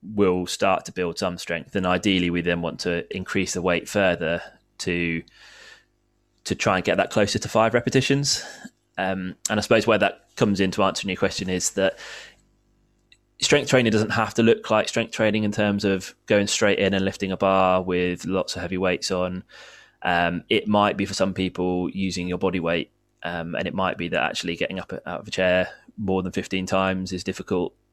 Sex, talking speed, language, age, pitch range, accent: male, 205 wpm, English, 20-39, 90-105 Hz, British